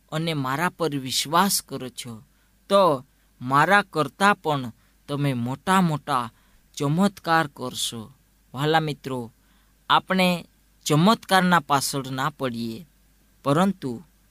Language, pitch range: Gujarati, 125-165 Hz